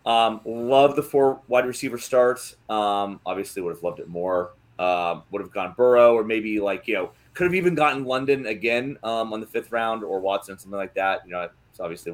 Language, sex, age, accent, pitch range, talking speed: English, male, 30-49, American, 95-125 Hz, 220 wpm